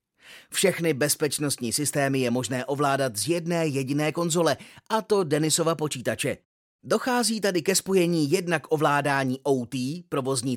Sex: male